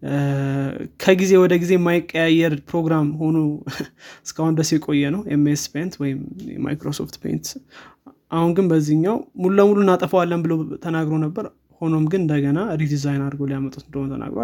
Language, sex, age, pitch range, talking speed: Amharic, male, 20-39, 145-170 Hz, 110 wpm